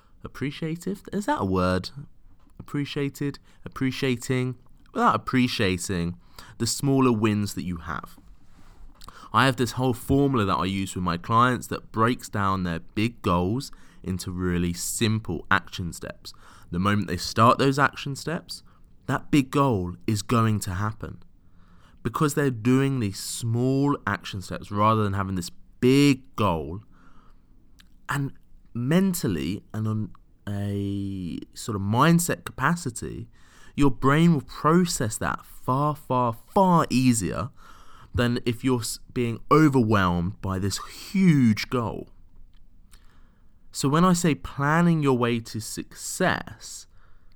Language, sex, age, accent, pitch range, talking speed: English, male, 20-39, British, 90-130 Hz, 125 wpm